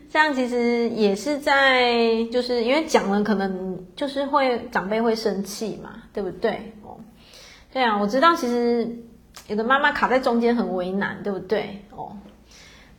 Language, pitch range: Chinese, 200-250 Hz